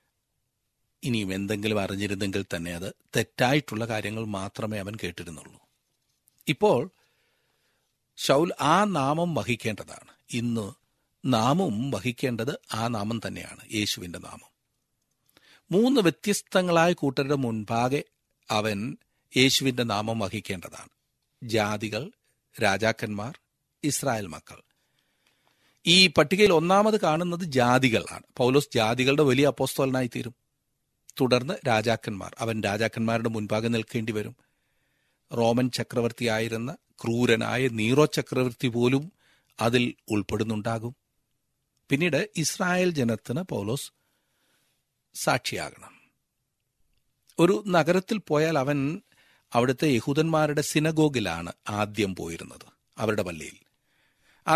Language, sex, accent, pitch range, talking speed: Malayalam, male, native, 110-145 Hz, 85 wpm